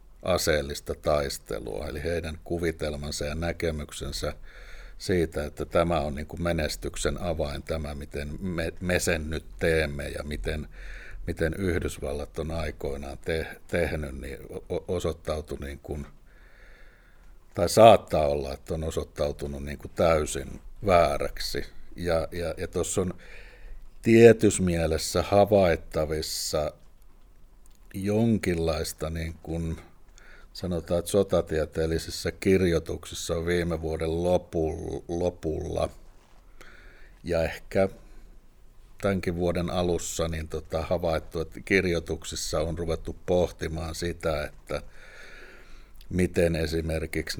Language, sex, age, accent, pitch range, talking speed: Finnish, male, 60-79, native, 80-85 Hz, 95 wpm